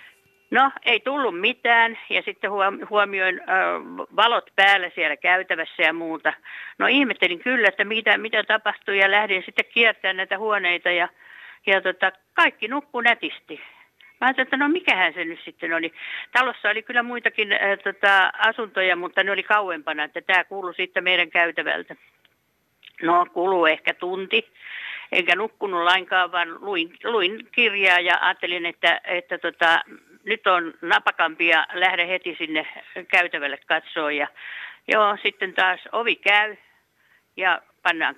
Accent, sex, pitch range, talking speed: native, female, 175-220 Hz, 140 wpm